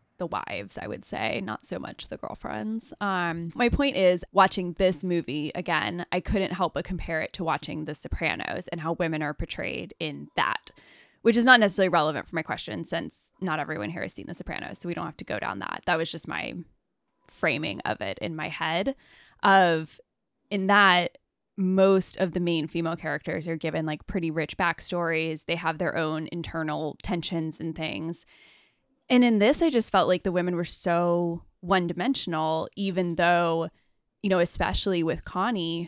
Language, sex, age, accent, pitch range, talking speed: English, female, 10-29, American, 165-195 Hz, 185 wpm